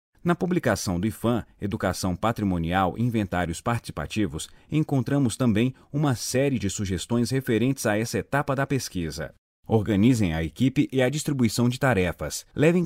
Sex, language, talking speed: male, Portuguese, 140 wpm